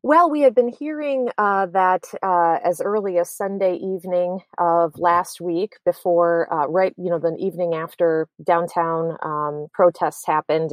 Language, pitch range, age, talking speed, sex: English, 160-195 Hz, 30-49, 155 wpm, female